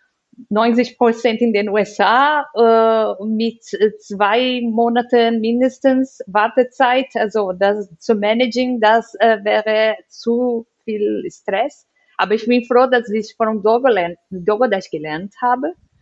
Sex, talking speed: female, 115 wpm